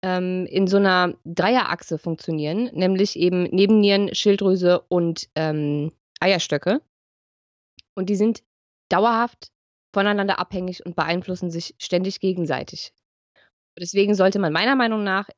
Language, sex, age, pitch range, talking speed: German, female, 20-39, 180-220 Hz, 115 wpm